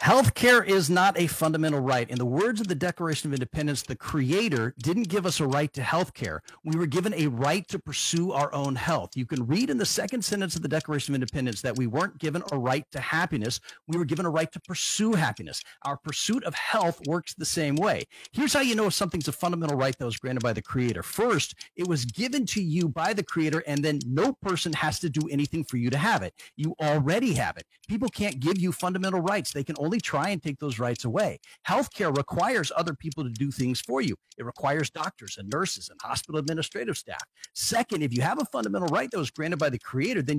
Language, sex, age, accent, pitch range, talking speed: English, male, 40-59, American, 140-185 Hz, 235 wpm